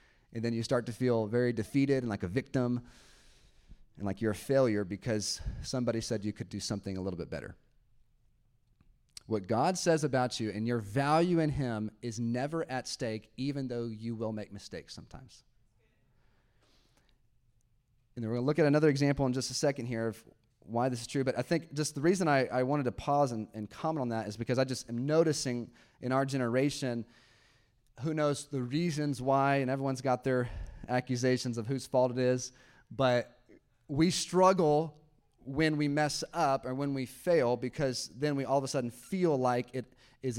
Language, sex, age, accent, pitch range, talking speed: English, male, 30-49, American, 115-145 Hz, 195 wpm